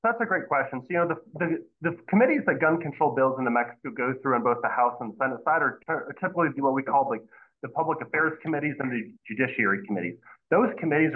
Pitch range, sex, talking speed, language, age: 125-160 Hz, male, 240 wpm, English, 30-49